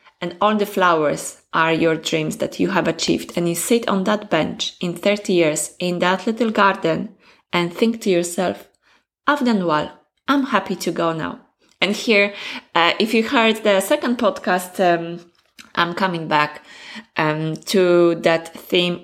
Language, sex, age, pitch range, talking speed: English, female, 20-39, 170-210 Hz, 165 wpm